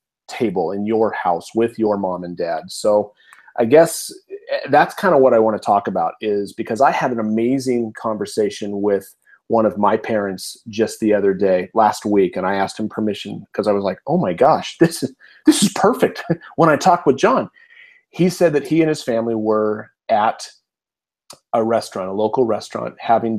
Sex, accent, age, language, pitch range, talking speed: male, American, 30-49, English, 110-145 Hz, 195 wpm